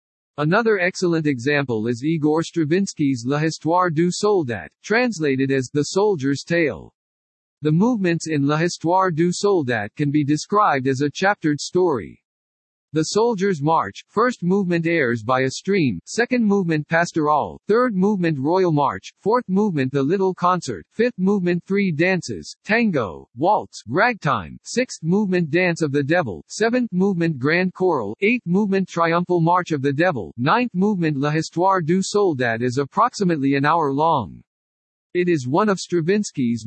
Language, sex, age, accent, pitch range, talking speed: English, male, 50-69, American, 145-190 Hz, 145 wpm